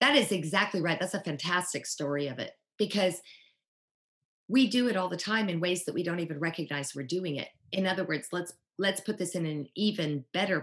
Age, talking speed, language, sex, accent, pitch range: 40-59, 215 wpm, English, female, American, 145-185 Hz